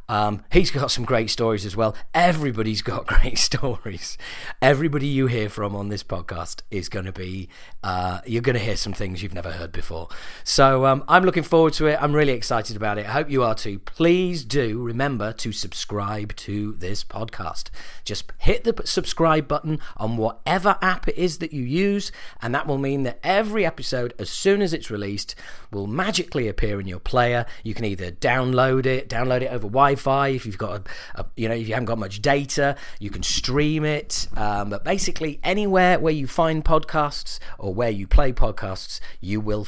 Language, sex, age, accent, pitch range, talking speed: English, male, 40-59, British, 105-150 Hz, 195 wpm